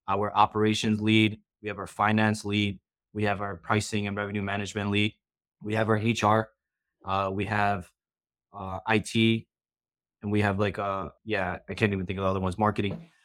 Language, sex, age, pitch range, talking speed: English, male, 20-39, 100-110 Hz, 185 wpm